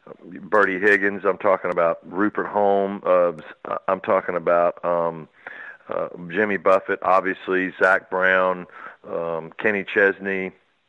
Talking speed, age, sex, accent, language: 115 wpm, 50-69, male, American, English